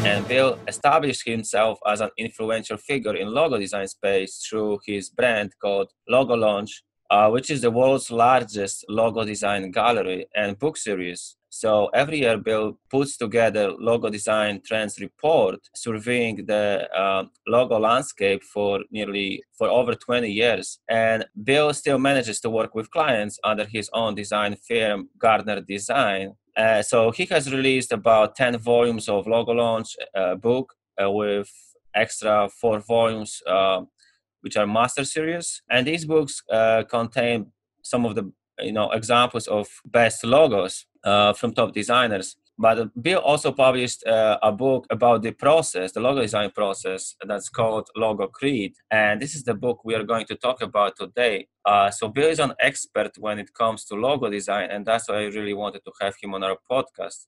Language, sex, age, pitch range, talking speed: English, male, 20-39, 105-120 Hz, 170 wpm